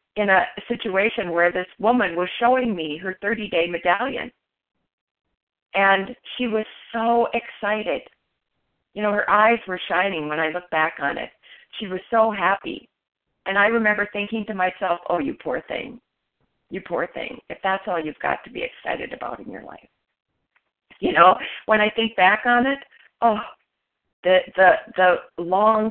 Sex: female